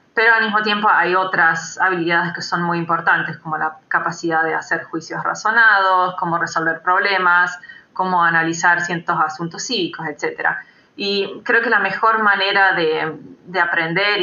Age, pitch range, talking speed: 20-39, 165-195 Hz, 150 wpm